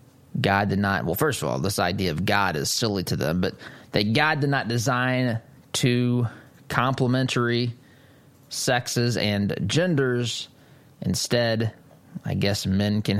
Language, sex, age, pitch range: English, male, 20-39, 105-135 Hz